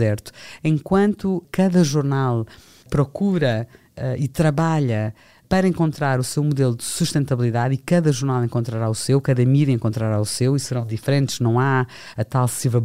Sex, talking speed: female, 150 wpm